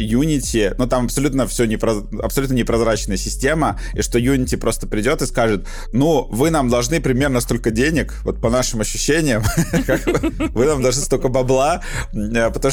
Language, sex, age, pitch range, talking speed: Russian, male, 20-39, 100-125 Hz, 155 wpm